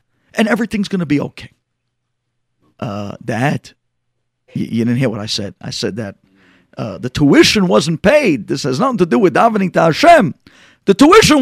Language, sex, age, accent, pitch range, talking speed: English, male, 50-69, American, 130-220 Hz, 175 wpm